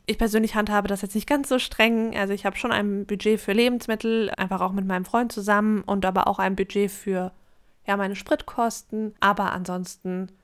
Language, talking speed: German, 190 wpm